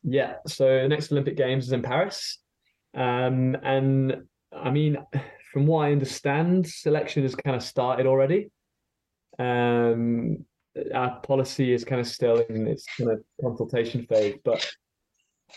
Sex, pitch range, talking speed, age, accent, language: male, 115-140 Hz, 145 wpm, 20-39, British, English